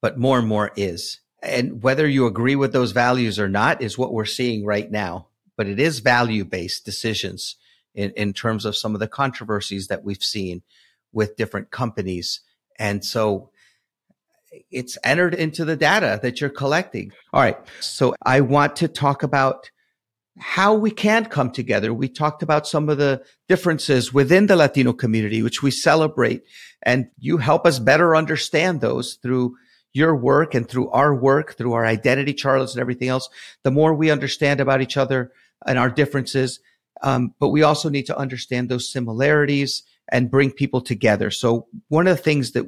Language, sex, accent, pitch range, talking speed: English, male, American, 115-150 Hz, 175 wpm